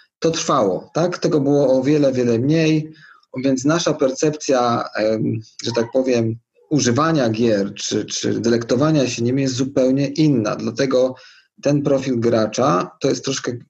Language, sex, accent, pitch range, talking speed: Polish, male, native, 115-140 Hz, 140 wpm